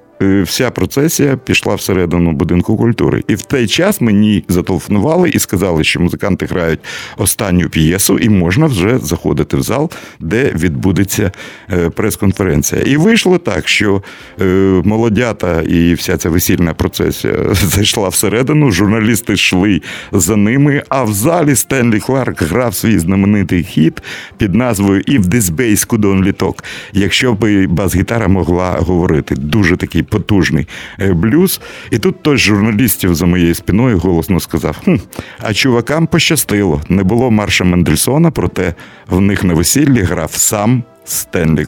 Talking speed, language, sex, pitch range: 130 wpm, Russian, male, 85-115 Hz